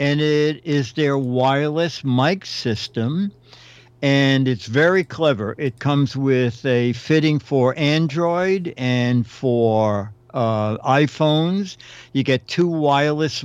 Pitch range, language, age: 125-145 Hz, English, 60-79